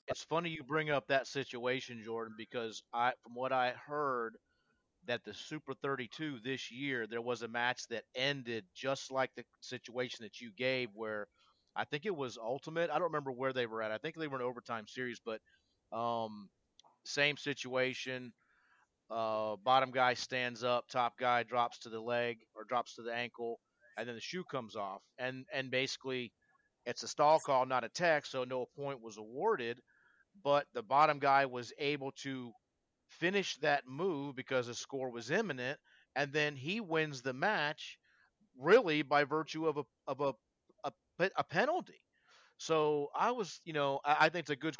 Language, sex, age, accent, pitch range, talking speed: English, male, 30-49, American, 120-145 Hz, 180 wpm